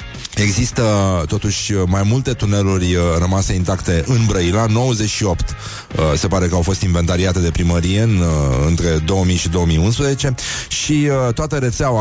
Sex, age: male, 30-49